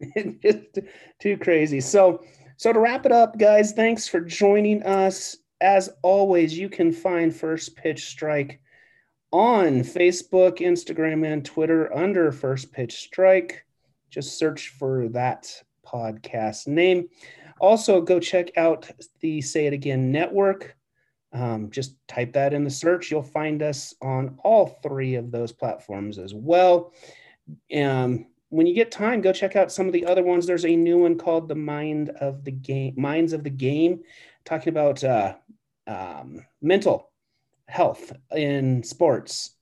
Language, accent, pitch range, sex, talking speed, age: English, American, 130-175 Hz, male, 150 wpm, 30-49